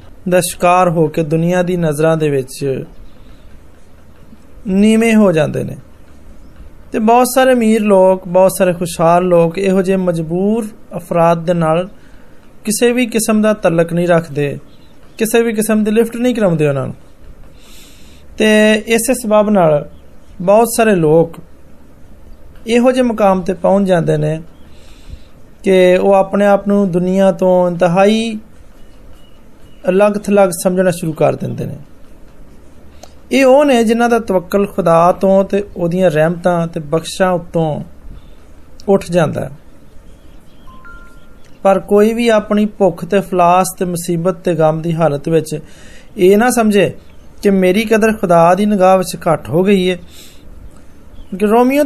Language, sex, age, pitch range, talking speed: Hindi, male, 20-39, 160-210 Hz, 90 wpm